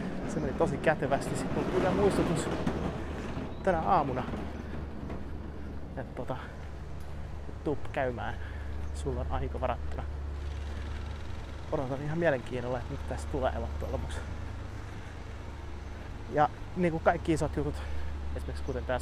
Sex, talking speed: male, 110 wpm